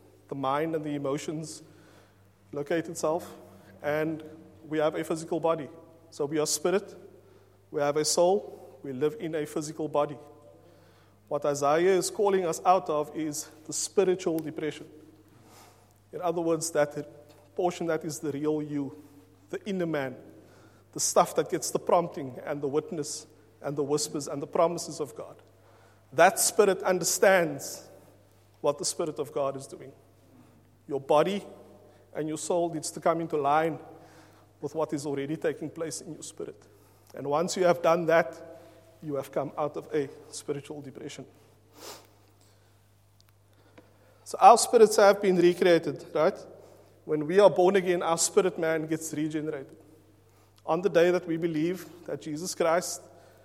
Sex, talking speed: male, 155 wpm